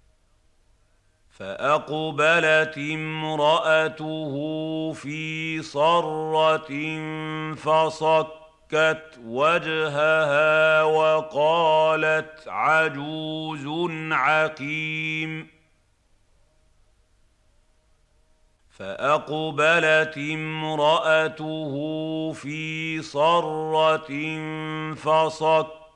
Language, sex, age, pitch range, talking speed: Arabic, male, 50-69, 145-155 Hz, 30 wpm